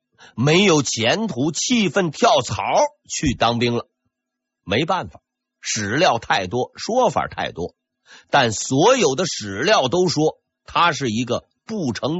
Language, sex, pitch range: Chinese, male, 125-175 Hz